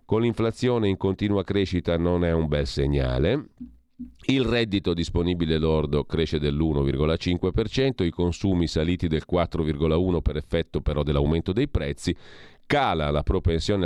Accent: native